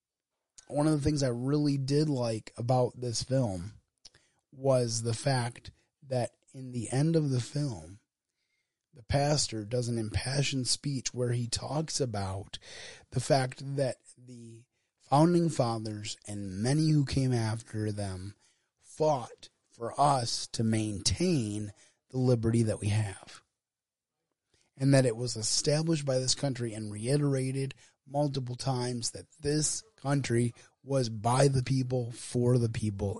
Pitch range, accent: 115-140 Hz, American